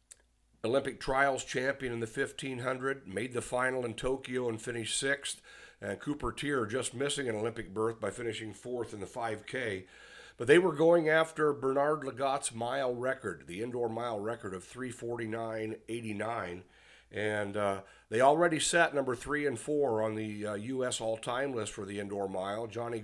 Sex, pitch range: male, 110-140 Hz